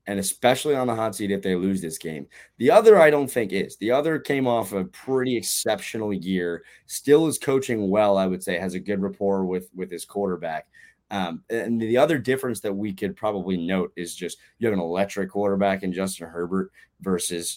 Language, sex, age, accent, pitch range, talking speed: English, male, 20-39, American, 90-110 Hz, 210 wpm